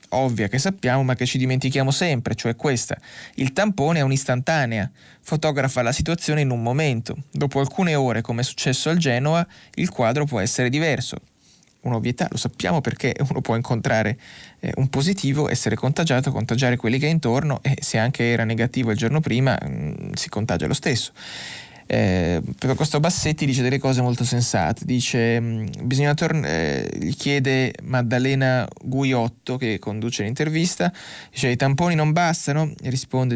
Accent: native